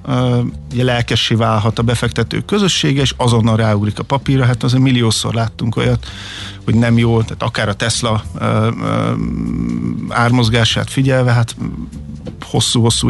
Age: 50-69